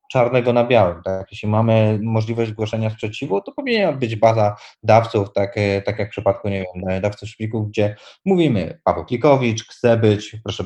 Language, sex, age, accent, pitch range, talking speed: Polish, male, 20-39, native, 100-120 Hz, 170 wpm